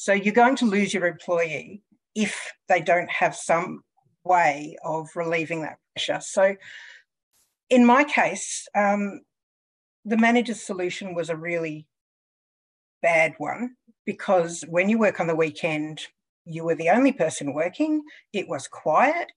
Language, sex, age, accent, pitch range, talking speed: English, female, 50-69, Australian, 165-215 Hz, 145 wpm